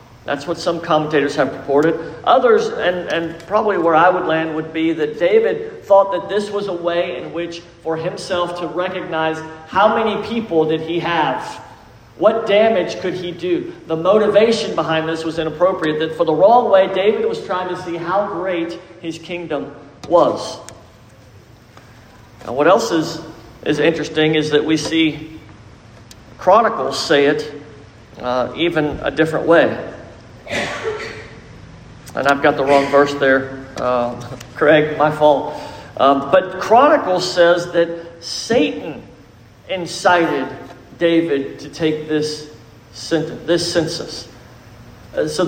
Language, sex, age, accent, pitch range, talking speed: English, male, 50-69, American, 145-180 Hz, 140 wpm